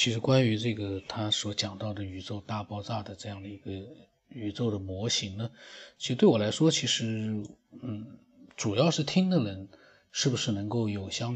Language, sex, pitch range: Chinese, male, 110-175 Hz